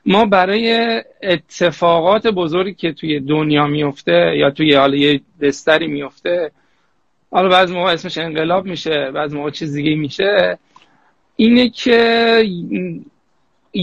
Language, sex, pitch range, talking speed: Persian, male, 155-195 Hz, 115 wpm